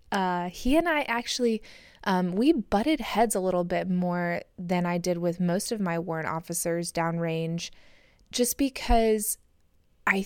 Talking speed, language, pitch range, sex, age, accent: 150 wpm, English, 165-195 Hz, female, 20-39, American